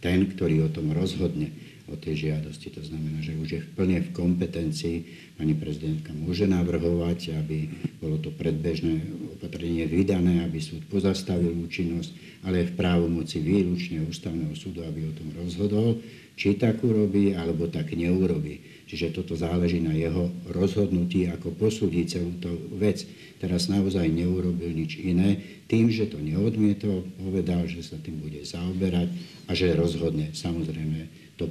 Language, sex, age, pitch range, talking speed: Slovak, male, 60-79, 80-95 Hz, 150 wpm